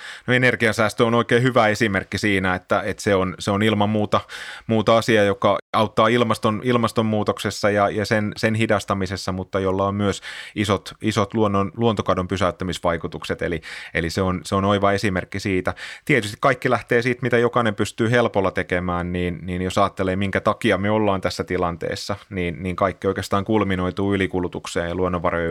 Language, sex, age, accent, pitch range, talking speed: Finnish, male, 30-49, native, 90-110 Hz, 165 wpm